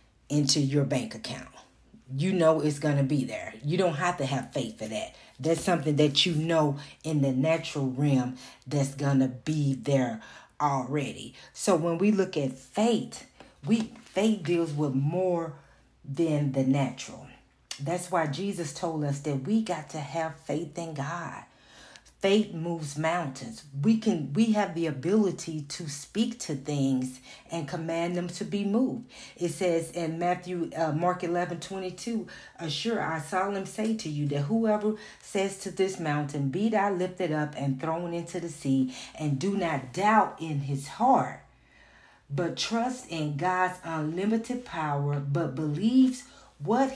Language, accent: English, American